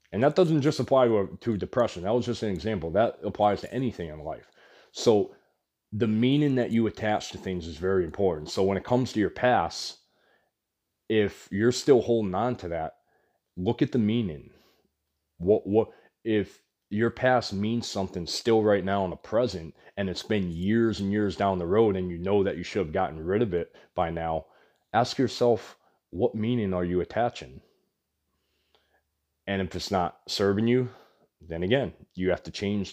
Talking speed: 185 wpm